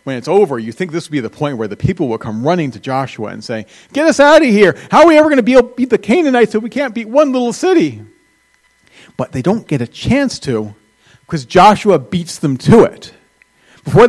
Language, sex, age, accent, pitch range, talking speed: English, male, 40-59, American, 140-215 Hz, 245 wpm